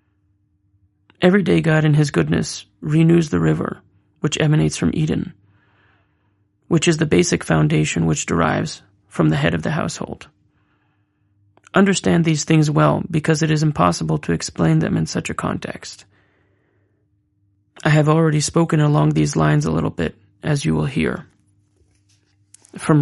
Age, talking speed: 30-49, 145 wpm